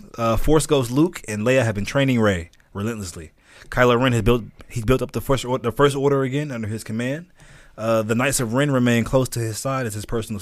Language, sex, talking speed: English, male, 235 wpm